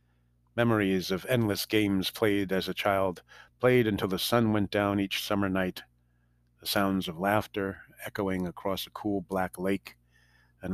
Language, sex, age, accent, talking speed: English, male, 50-69, American, 155 wpm